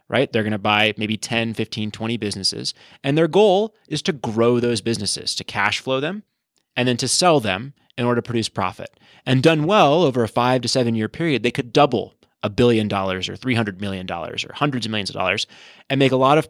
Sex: male